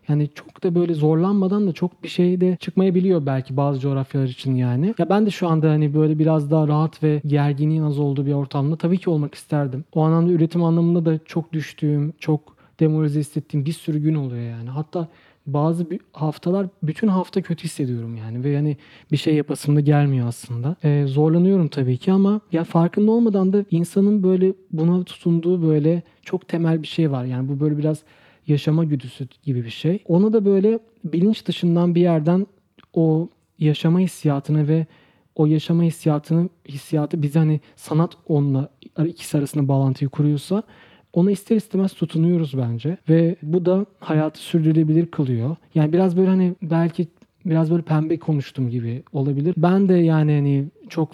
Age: 40-59